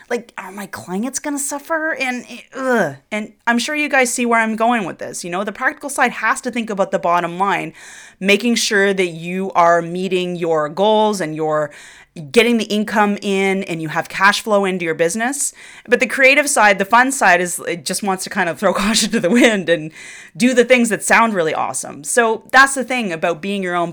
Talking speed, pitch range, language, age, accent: 225 wpm, 180-240 Hz, English, 30-49, American